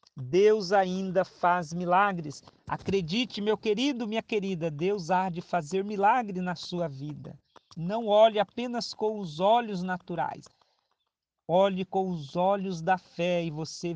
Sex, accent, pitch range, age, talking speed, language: male, Brazilian, 170-210 Hz, 50-69, 140 wpm, Portuguese